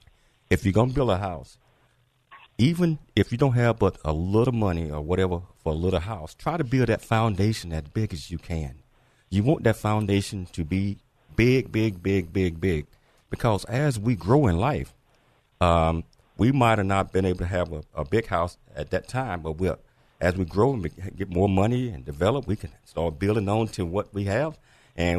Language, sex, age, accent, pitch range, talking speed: English, male, 50-69, American, 90-125 Hz, 200 wpm